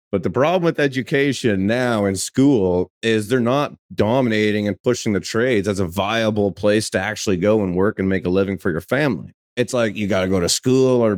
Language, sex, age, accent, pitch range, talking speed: English, male, 30-49, American, 95-120 Hz, 220 wpm